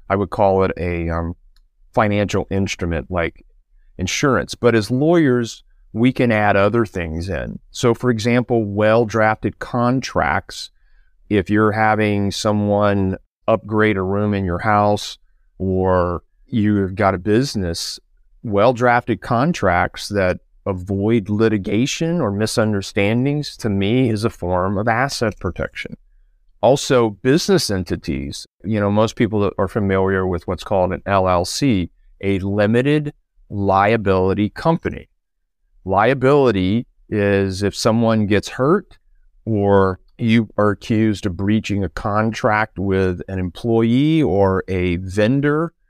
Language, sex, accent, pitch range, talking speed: English, male, American, 95-120 Hz, 120 wpm